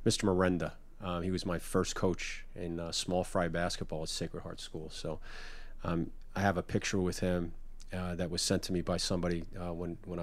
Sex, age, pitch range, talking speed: male, 30-49, 90-95 Hz, 210 wpm